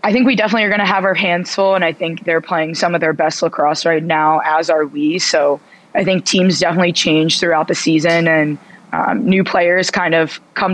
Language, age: English, 20-39